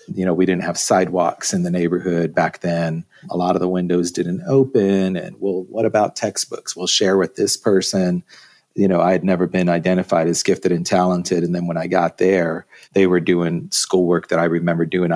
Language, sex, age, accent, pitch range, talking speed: English, male, 40-59, American, 90-105 Hz, 210 wpm